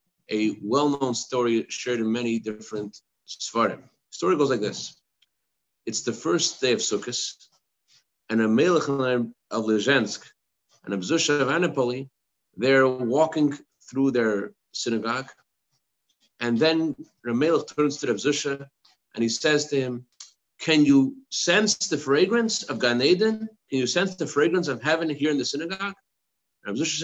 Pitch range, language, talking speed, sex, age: 125-175 Hz, English, 145 wpm, male, 50-69